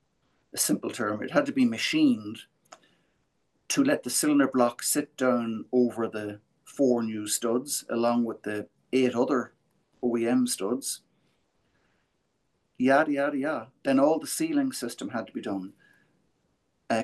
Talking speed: 140 wpm